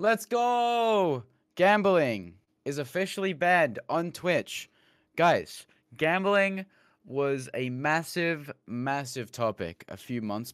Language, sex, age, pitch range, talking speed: English, male, 20-39, 100-140 Hz, 100 wpm